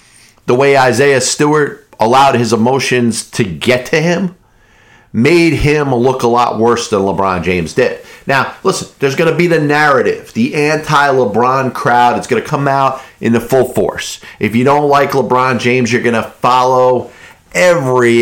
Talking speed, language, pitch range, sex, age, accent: 170 wpm, English, 120-145 Hz, male, 40-59, American